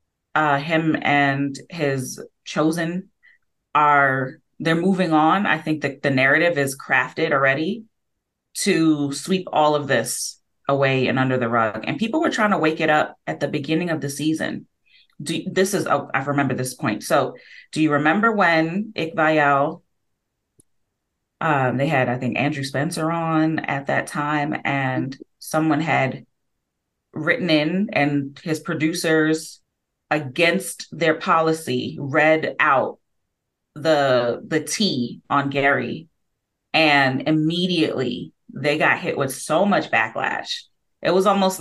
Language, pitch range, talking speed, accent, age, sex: English, 140-170 Hz, 140 wpm, American, 30-49, female